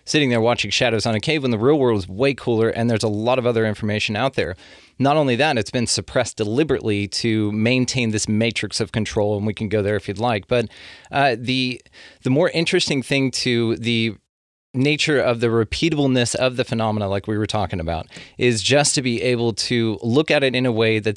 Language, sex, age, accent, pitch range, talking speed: English, male, 30-49, American, 110-130 Hz, 220 wpm